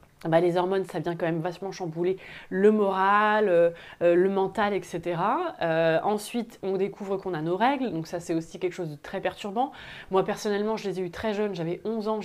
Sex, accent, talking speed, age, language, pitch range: female, French, 210 wpm, 20-39, French, 185-225 Hz